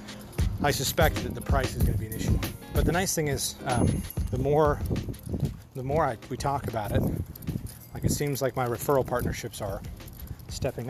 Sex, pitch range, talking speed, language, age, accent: male, 105-135 Hz, 195 wpm, English, 40-59, American